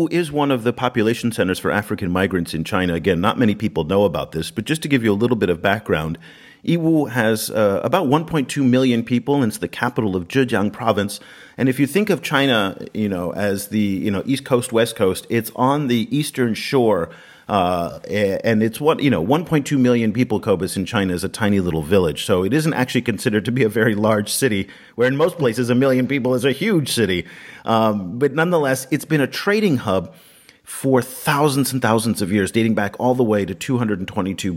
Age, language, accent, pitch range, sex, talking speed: 40-59, English, American, 100-135 Hz, male, 215 wpm